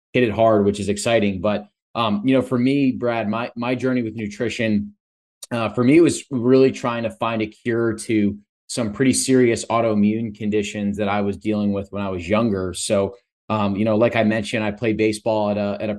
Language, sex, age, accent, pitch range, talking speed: English, male, 20-39, American, 105-115 Hz, 215 wpm